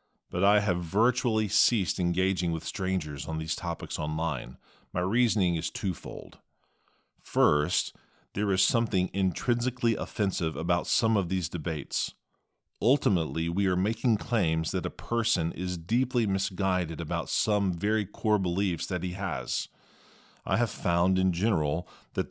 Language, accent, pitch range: English, American, 85-105 Hz